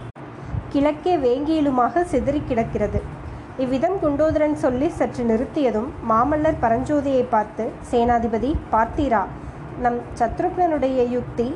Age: 20-39